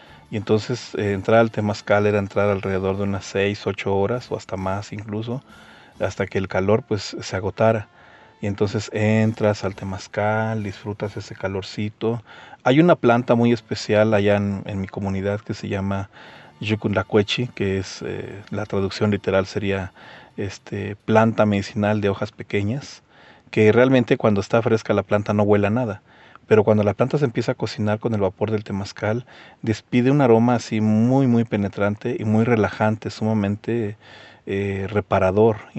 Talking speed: 165 wpm